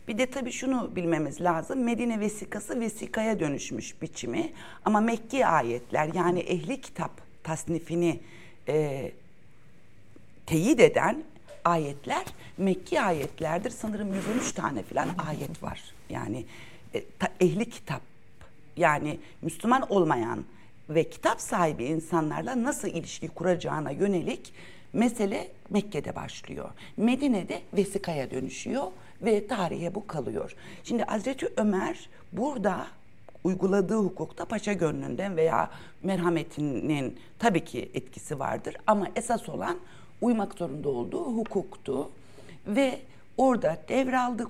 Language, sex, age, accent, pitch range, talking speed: Turkish, female, 60-79, native, 150-225 Hz, 105 wpm